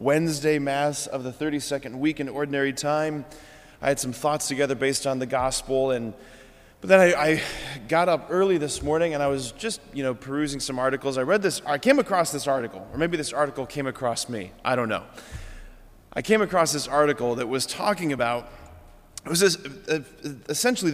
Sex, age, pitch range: male, 20-39, 125-155 Hz